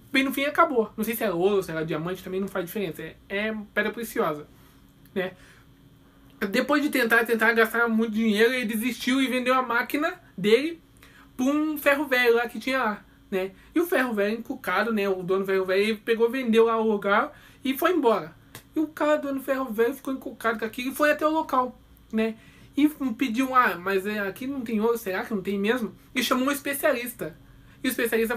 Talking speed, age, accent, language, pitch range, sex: 205 wpm, 20-39, Brazilian, Portuguese, 210-265 Hz, male